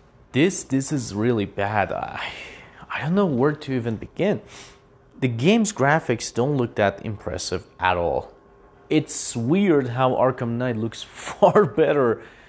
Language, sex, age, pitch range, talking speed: English, male, 30-49, 120-145 Hz, 145 wpm